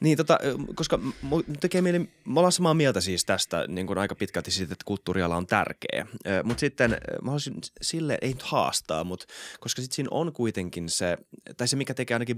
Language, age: Finnish, 20-39